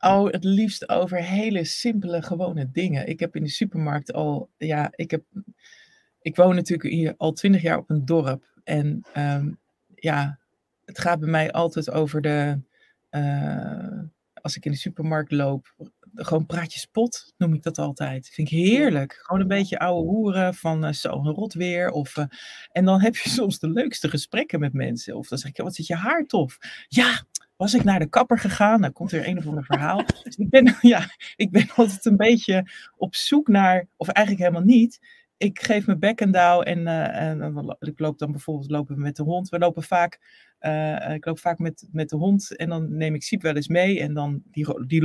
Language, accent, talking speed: Dutch, Dutch, 210 wpm